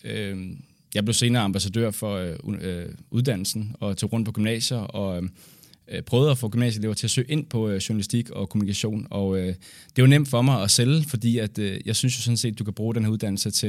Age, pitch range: 20-39, 105-130 Hz